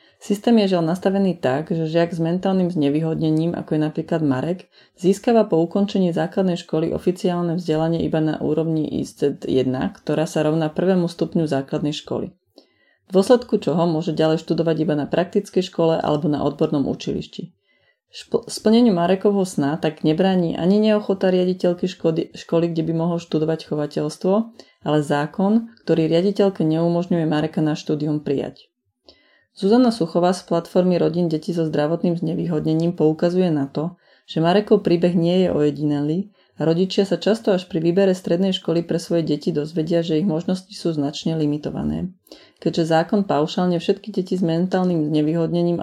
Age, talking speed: 30-49, 155 wpm